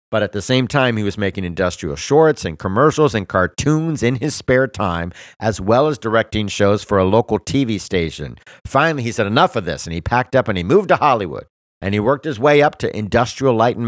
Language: English